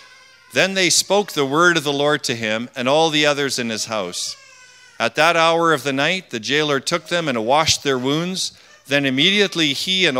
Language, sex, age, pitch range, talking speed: English, male, 40-59, 115-170 Hz, 205 wpm